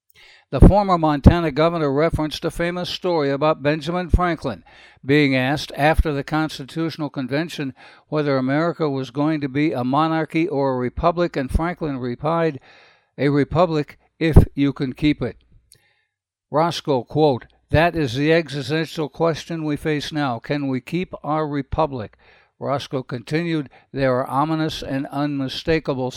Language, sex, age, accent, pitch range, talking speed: English, male, 60-79, American, 135-160 Hz, 140 wpm